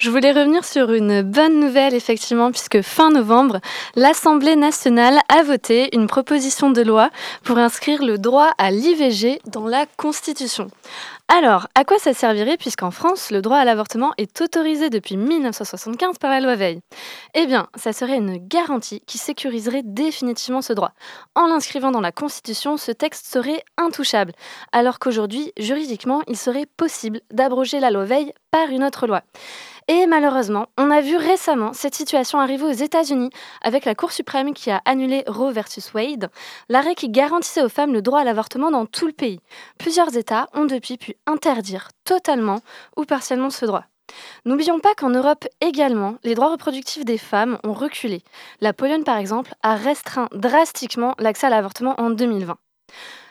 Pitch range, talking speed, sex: 230-300 Hz, 170 wpm, female